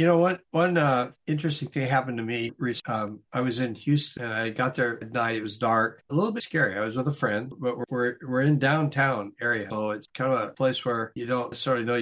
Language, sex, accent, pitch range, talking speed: English, male, American, 125-155 Hz, 260 wpm